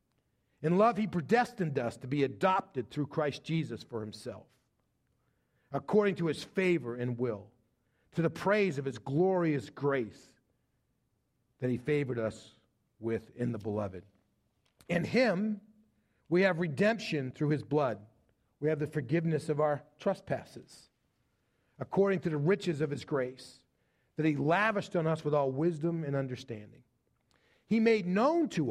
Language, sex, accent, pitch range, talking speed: English, male, American, 130-195 Hz, 145 wpm